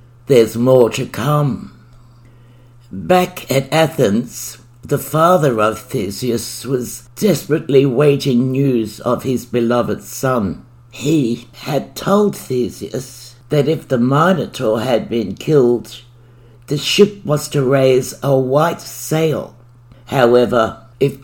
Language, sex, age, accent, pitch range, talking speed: English, male, 60-79, British, 120-145 Hz, 115 wpm